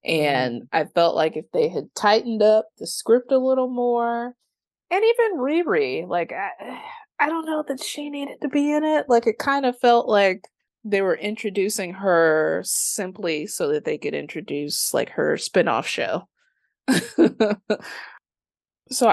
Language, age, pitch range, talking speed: English, 20-39, 170-280 Hz, 155 wpm